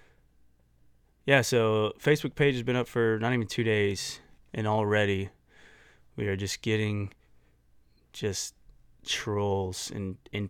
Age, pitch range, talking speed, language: 20-39, 95-130 Hz, 125 wpm, English